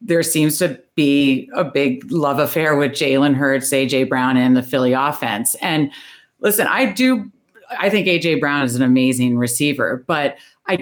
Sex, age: female, 40-59